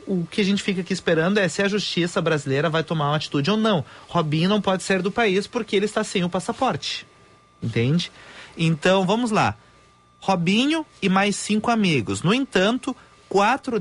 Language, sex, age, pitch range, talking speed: Portuguese, male, 30-49, 150-210 Hz, 180 wpm